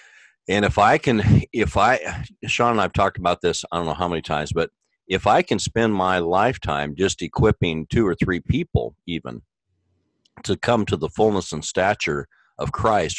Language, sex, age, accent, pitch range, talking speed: English, male, 50-69, American, 85-105 Hz, 185 wpm